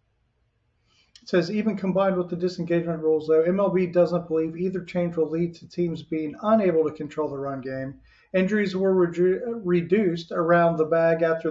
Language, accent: English, American